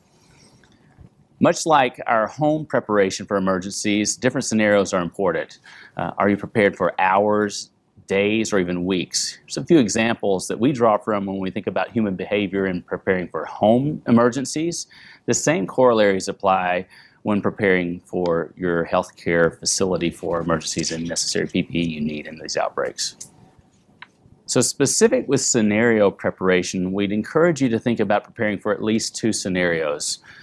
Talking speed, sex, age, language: 150 wpm, male, 40-59, English